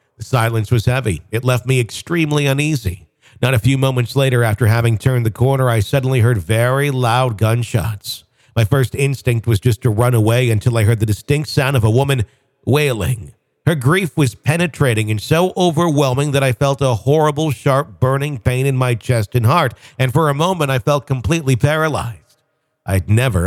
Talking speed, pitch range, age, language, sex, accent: 185 wpm, 110-135 Hz, 50-69, English, male, American